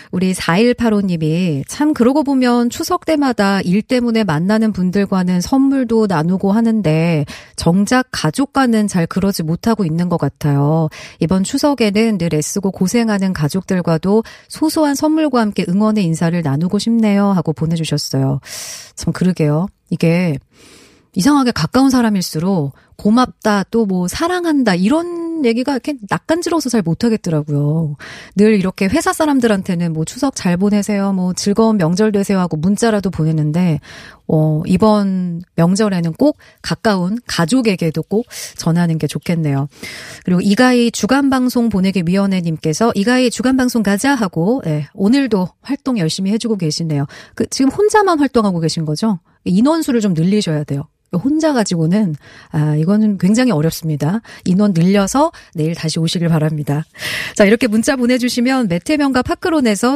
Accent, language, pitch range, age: native, Korean, 165-240 Hz, 30-49